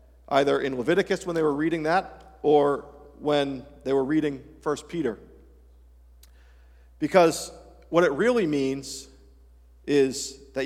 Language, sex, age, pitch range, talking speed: English, male, 50-69, 115-165 Hz, 125 wpm